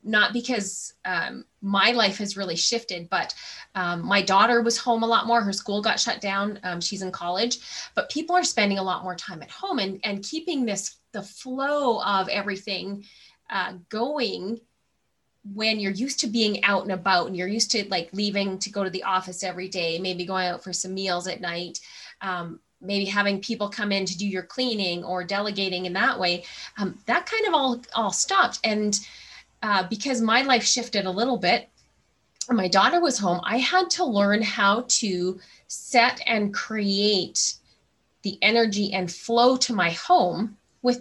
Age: 20-39